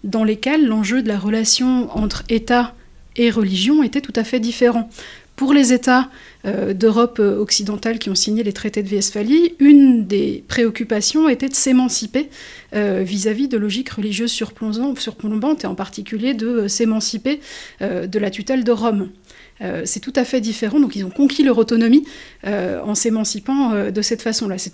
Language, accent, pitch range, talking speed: French, French, 210-255 Hz, 170 wpm